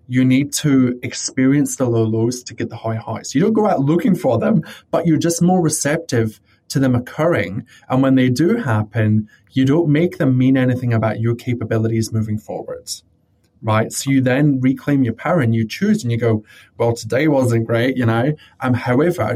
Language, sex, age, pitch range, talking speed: English, male, 20-39, 115-135 Hz, 200 wpm